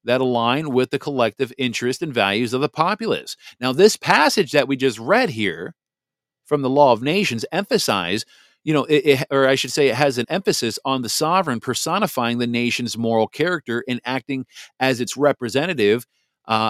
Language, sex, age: English, male, 40-59